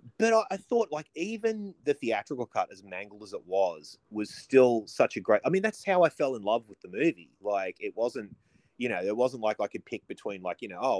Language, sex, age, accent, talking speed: English, male, 30-49, Australian, 255 wpm